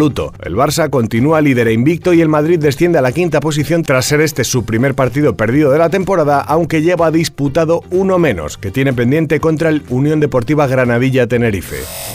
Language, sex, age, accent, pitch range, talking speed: Spanish, male, 40-59, Spanish, 130-165 Hz, 180 wpm